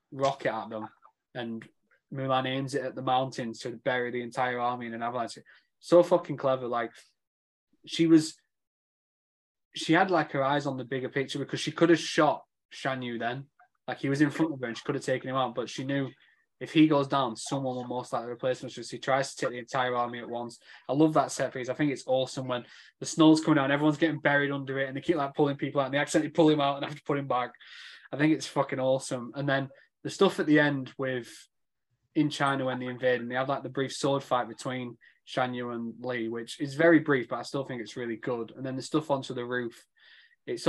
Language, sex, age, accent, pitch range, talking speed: English, male, 20-39, British, 125-145 Hz, 245 wpm